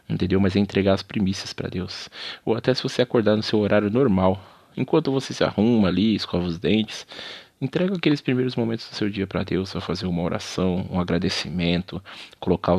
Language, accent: Portuguese, Brazilian